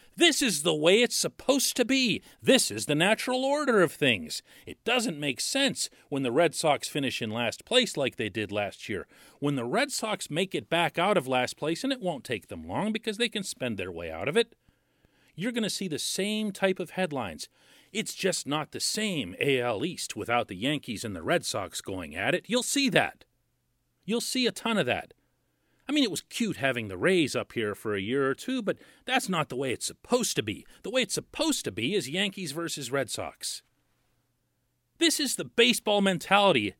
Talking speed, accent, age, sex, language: 215 wpm, American, 40-59, male, English